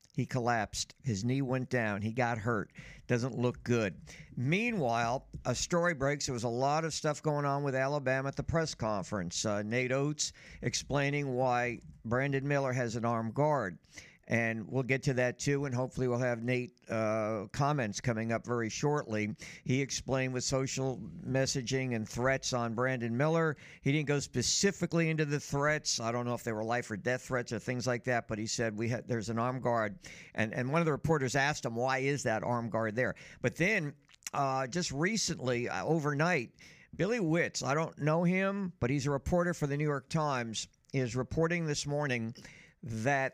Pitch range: 120-150 Hz